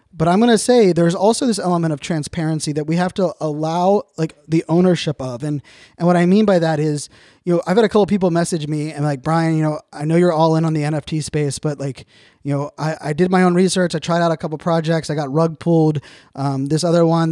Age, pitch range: 20-39, 150-175 Hz